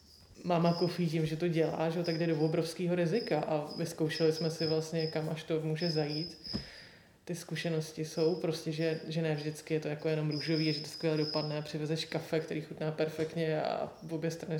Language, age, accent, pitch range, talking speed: Czech, 20-39, native, 155-170 Hz, 200 wpm